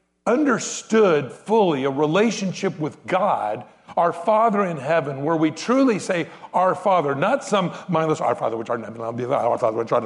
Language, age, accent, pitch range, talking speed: English, 60-79, American, 150-230 Hz, 180 wpm